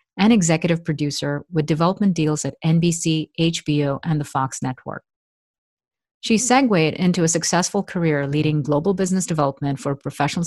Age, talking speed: 50-69, 150 wpm